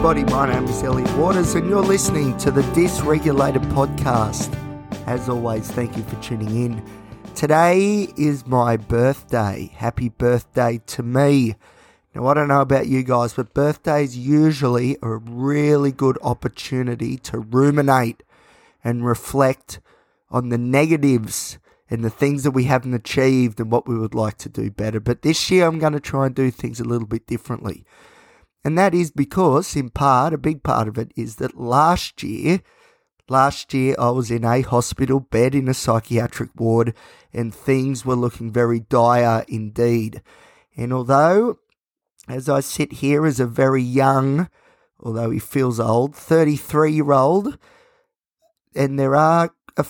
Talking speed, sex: 160 wpm, male